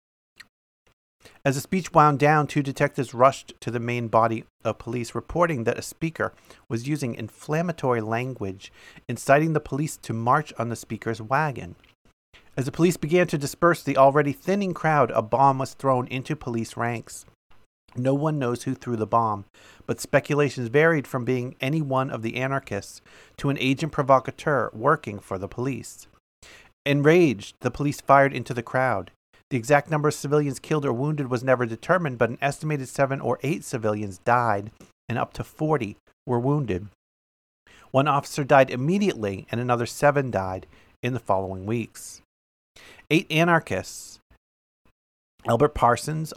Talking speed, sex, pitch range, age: 155 wpm, male, 115-145 Hz, 40-59